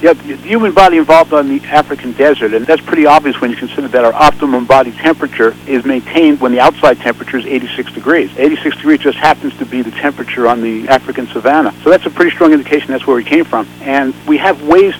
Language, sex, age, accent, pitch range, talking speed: English, male, 60-79, American, 125-160 Hz, 230 wpm